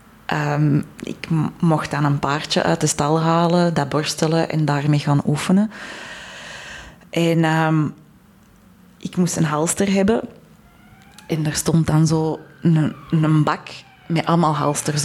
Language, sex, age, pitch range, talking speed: Dutch, female, 20-39, 150-185 Hz, 130 wpm